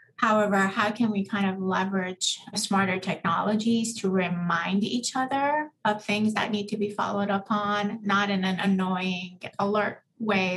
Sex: female